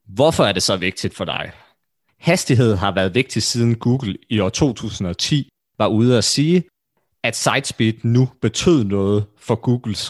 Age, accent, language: 30-49, native, Danish